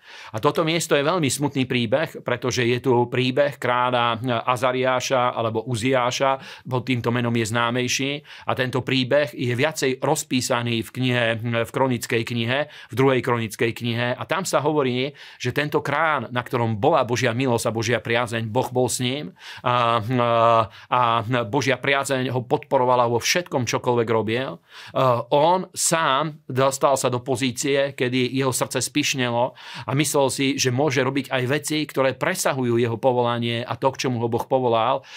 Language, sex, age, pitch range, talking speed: Slovak, male, 40-59, 120-140 Hz, 160 wpm